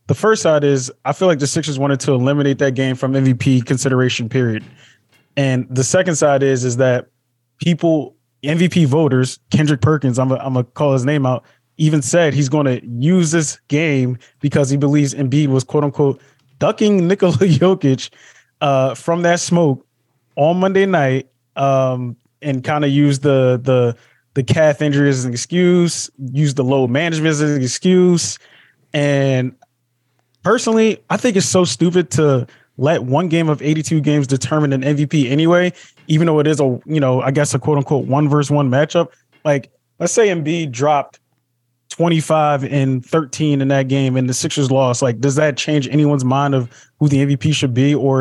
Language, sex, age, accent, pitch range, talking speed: English, male, 20-39, American, 130-155 Hz, 175 wpm